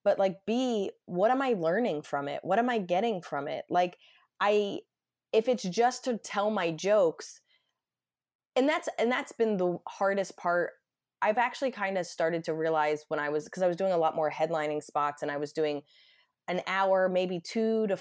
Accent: American